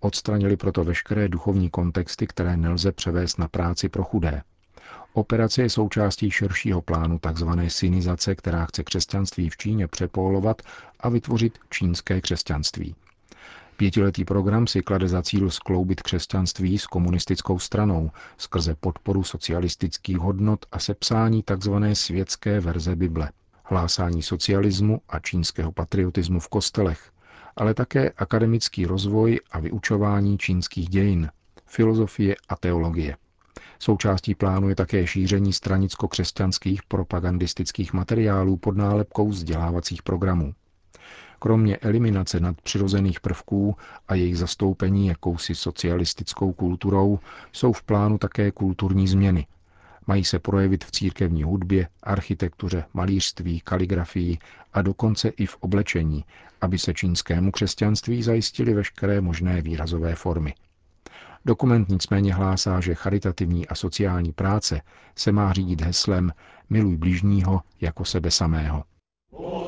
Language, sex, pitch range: Czech, male, 85-100 Hz